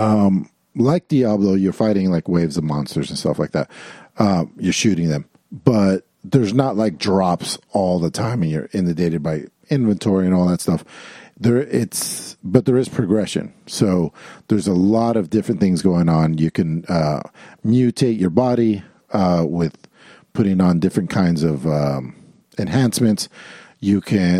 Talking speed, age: 160 wpm, 40-59